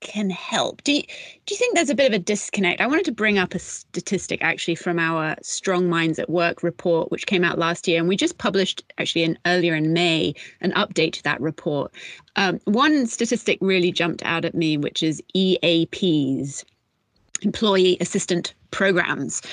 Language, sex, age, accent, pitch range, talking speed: English, female, 30-49, British, 165-205 Hz, 185 wpm